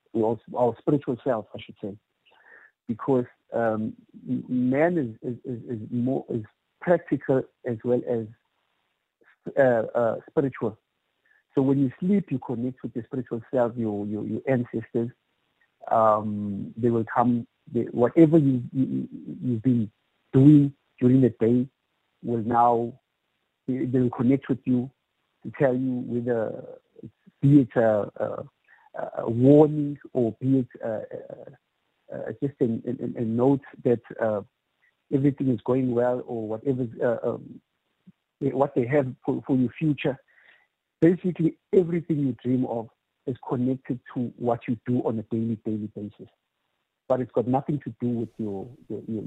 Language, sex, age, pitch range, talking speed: English, male, 50-69, 115-135 Hz, 145 wpm